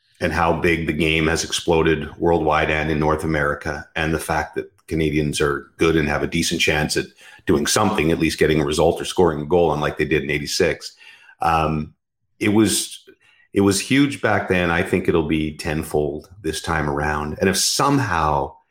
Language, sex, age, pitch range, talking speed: English, male, 40-59, 75-95 Hz, 190 wpm